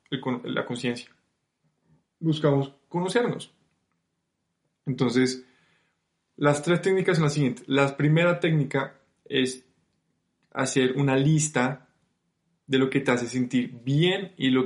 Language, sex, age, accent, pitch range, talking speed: Spanish, male, 20-39, Colombian, 120-145 Hz, 115 wpm